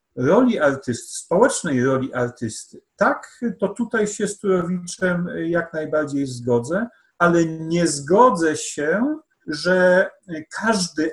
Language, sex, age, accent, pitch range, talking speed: Polish, male, 40-59, native, 145-215 Hz, 110 wpm